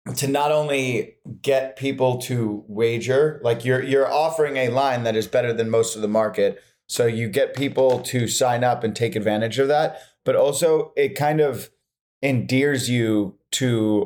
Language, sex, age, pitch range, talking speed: English, male, 30-49, 115-135 Hz, 175 wpm